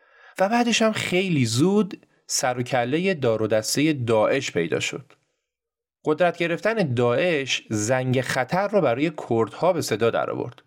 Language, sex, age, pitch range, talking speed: Persian, male, 30-49, 120-180 Hz, 130 wpm